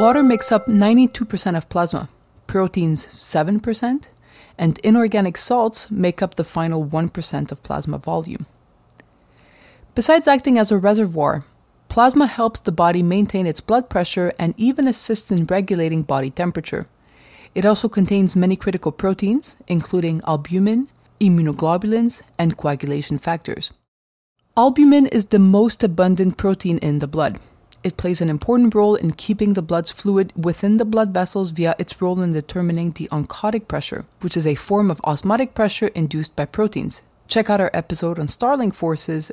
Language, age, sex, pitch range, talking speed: English, 30-49, female, 165-220 Hz, 150 wpm